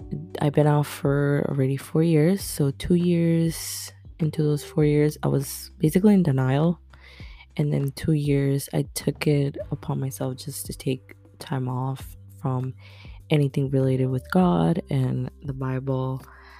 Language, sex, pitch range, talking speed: English, female, 100-145 Hz, 150 wpm